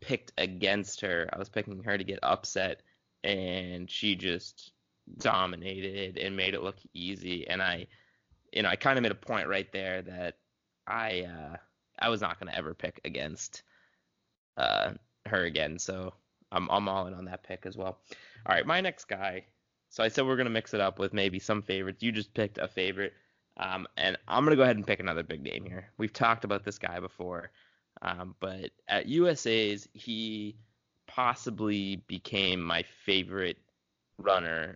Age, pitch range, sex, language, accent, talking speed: 20-39, 90-105 Hz, male, English, American, 180 wpm